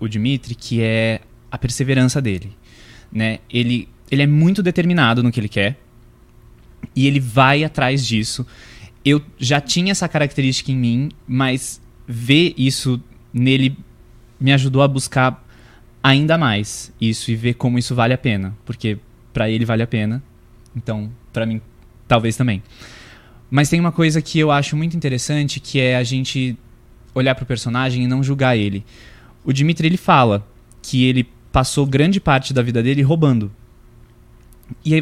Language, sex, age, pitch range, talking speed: Portuguese, male, 20-39, 115-145 Hz, 160 wpm